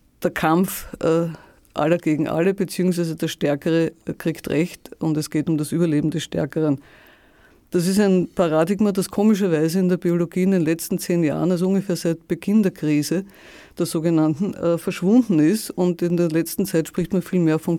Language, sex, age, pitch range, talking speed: German, female, 50-69, 155-180 Hz, 180 wpm